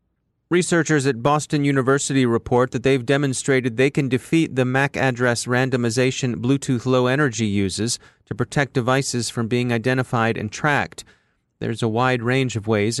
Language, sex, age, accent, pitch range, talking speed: English, male, 30-49, American, 115-135 Hz, 150 wpm